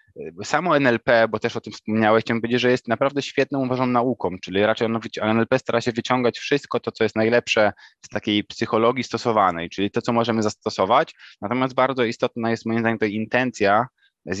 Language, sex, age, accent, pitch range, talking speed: Polish, male, 20-39, native, 105-125 Hz, 185 wpm